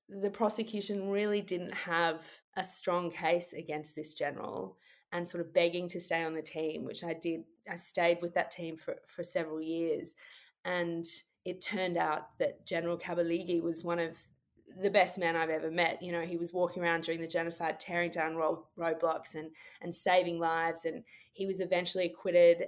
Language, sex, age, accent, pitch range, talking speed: English, female, 20-39, Australian, 170-215 Hz, 185 wpm